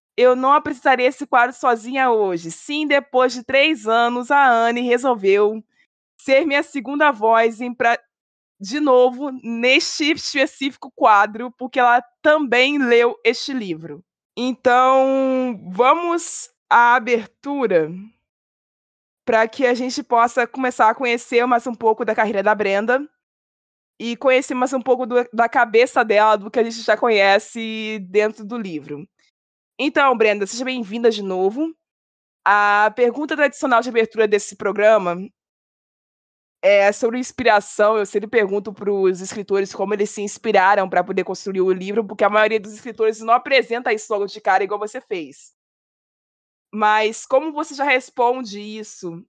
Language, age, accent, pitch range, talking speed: Portuguese, 20-39, Brazilian, 205-255 Hz, 140 wpm